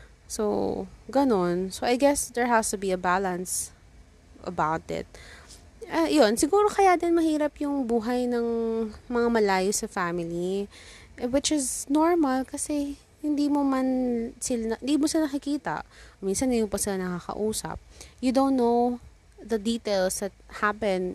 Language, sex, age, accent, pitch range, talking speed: English, female, 20-39, Filipino, 180-245 Hz, 145 wpm